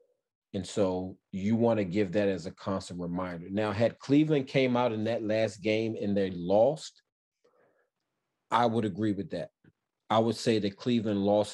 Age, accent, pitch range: 30-49, American, 95-105 Hz